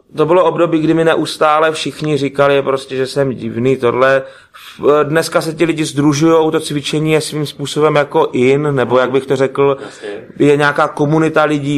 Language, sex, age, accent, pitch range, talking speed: Czech, male, 30-49, native, 130-155 Hz, 175 wpm